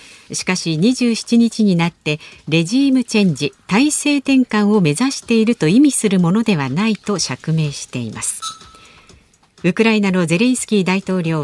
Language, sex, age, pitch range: Japanese, female, 50-69, 160-235 Hz